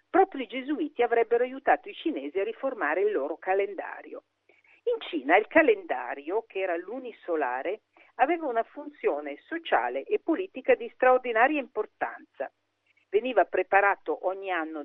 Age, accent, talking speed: 50-69, native, 130 wpm